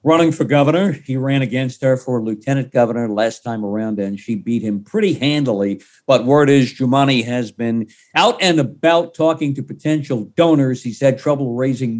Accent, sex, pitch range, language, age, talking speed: American, male, 120-150 Hz, English, 50-69, 180 wpm